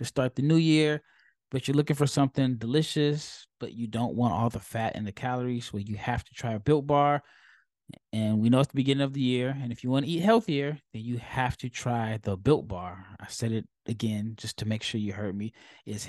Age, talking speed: 20-39, 245 wpm